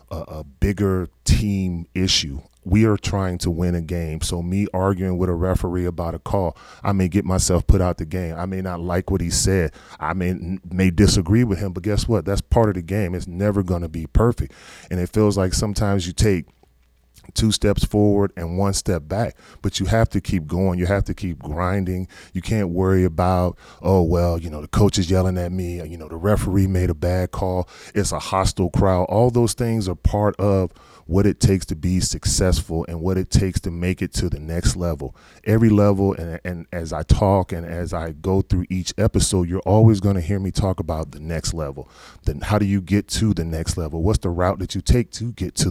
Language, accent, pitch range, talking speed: English, American, 85-100 Hz, 225 wpm